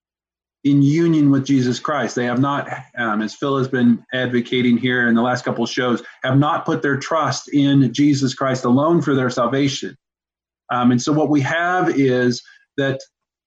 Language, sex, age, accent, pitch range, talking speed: English, male, 40-59, American, 125-150 Hz, 185 wpm